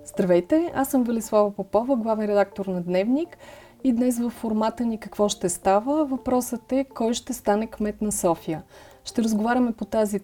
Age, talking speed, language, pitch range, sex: 30-49, 170 wpm, Bulgarian, 200-240 Hz, female